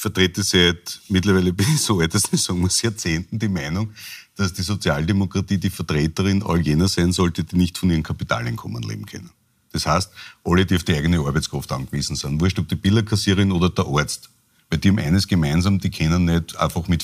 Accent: Austrian